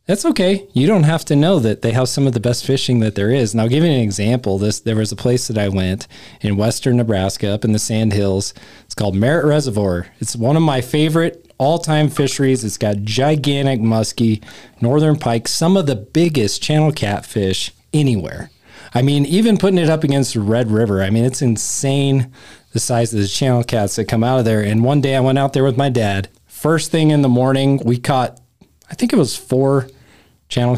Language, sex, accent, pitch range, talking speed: English, male, American, 110-140 Hz, 220 wpm